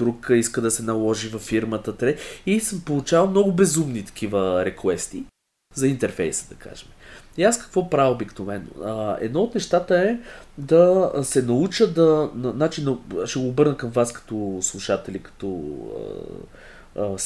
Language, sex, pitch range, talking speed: Bulgarian, male, 115-175 Hz, 150 wpm